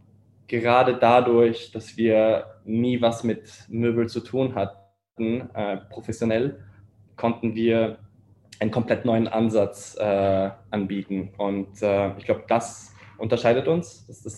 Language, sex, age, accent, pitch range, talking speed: German, male, 10-29, German, 105-115 Hz, 125 wpm